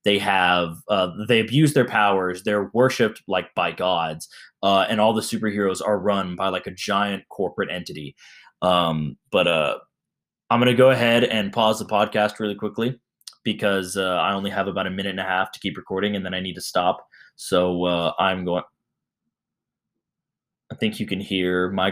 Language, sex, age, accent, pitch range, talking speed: English, male, 10-29, American, 95-125 Hz, 190 wpm